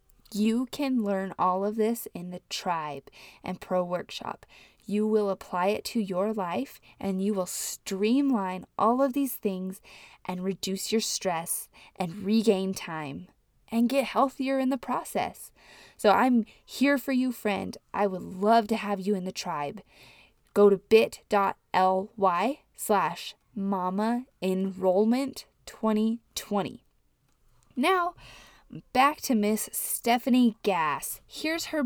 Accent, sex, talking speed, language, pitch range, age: American, female, 130 wpm, English, 190-245 Hz, 20-39